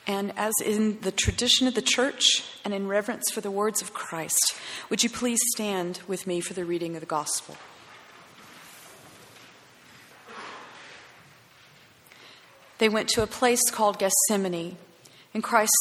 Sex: female